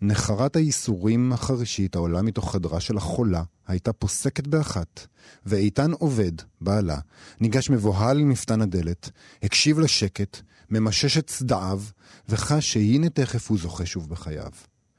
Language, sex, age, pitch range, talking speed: Hebrew, male, 40-59, 95-130 Hz, 125 wpm